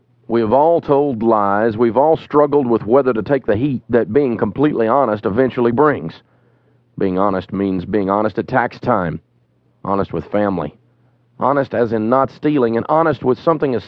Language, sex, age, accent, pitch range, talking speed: English, male, 40-59, American, 105-135 Hz, 175 wpm